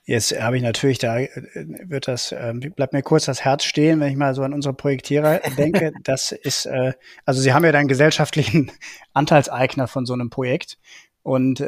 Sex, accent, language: male, German, German